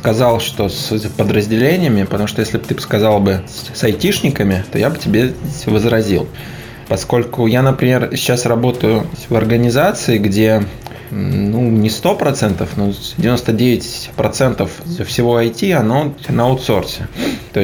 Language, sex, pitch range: Russian, male, 110-135 Hz